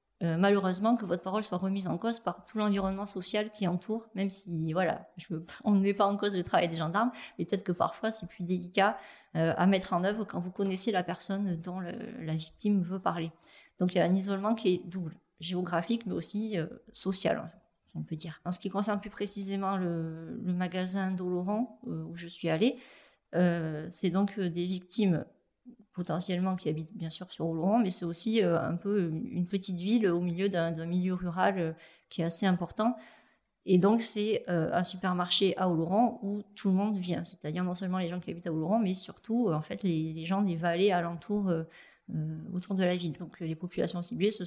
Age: 40-59